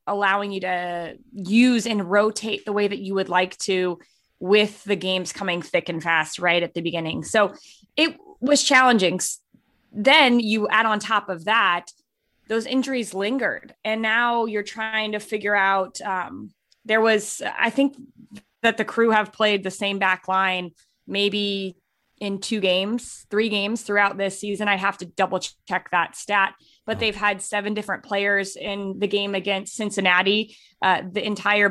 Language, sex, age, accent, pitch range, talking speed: English, female, 20-39, American, 190-220 Hz, 170 wpm